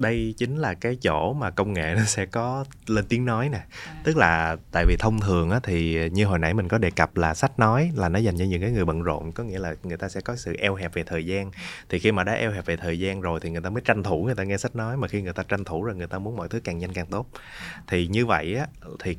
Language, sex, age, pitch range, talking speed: Vietnamese, male, 20-39, 85-115 Hz, 305 wpm